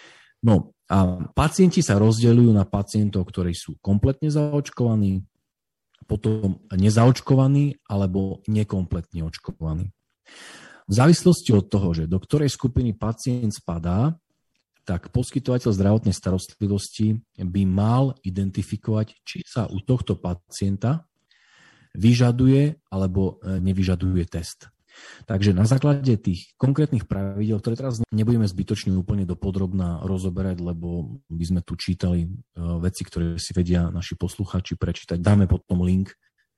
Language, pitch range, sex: Slovak, 95-120 Hz, male